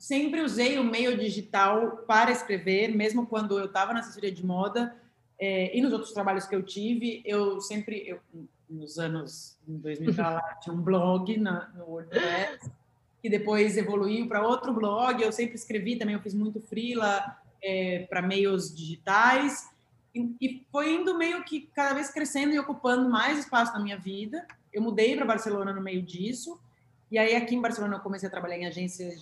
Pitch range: 180-230 Hz